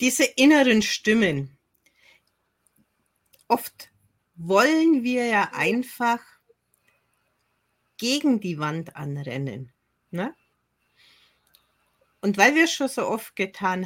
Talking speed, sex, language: 90 wpm, female, German